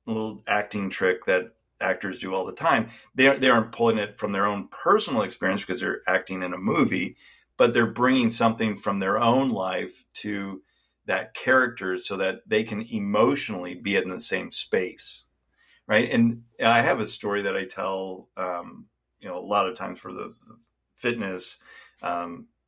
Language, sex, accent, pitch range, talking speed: English, male, American, 105-120 Hz, 175 wpm